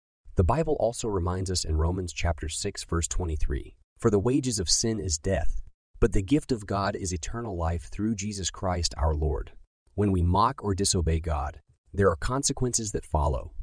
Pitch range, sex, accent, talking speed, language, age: 80-105 Hz, male, American, 185 wpm, English, 30-49